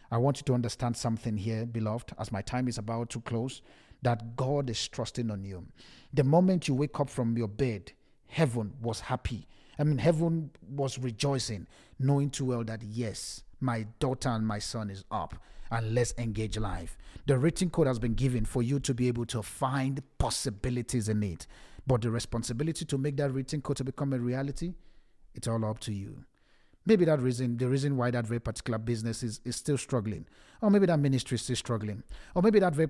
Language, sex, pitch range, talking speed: English, male, 115-145 Hz, 200 wpm